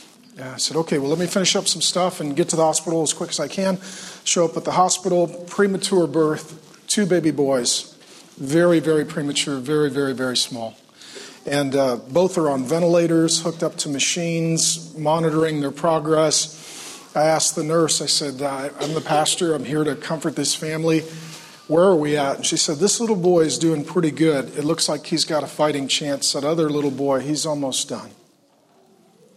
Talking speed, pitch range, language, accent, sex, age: 190 wpm, 150-170 Hz, English, American, male, 40-59